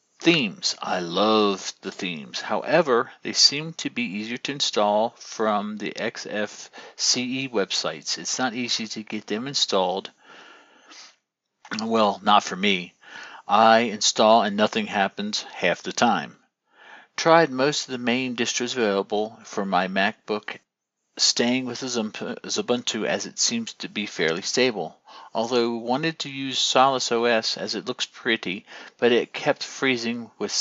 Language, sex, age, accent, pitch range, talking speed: English, male, 50-69, American, 110-165 Hz, 140 wpm